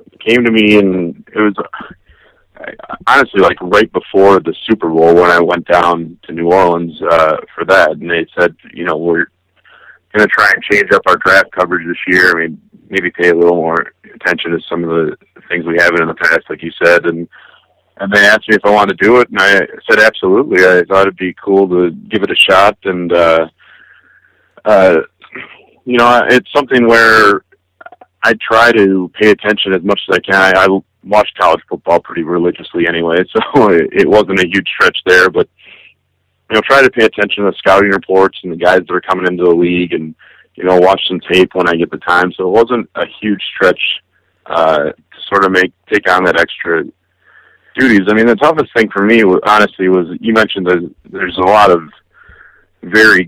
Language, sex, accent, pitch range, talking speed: English, male, American, 85-105 Hz, 205 wpm